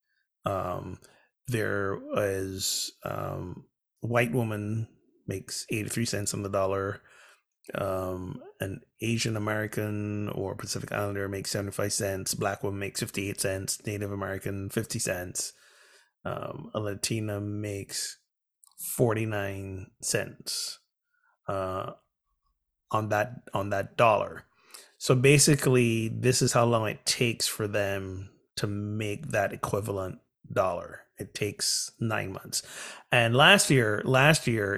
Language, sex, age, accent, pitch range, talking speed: English, male, 30-49, American, 100-120 Hz, 115 wpm